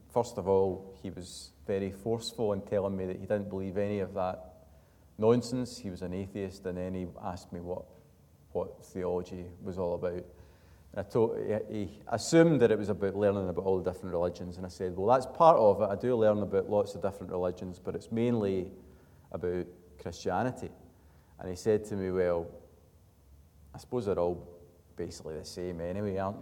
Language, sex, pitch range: English, male, 90-105 Hz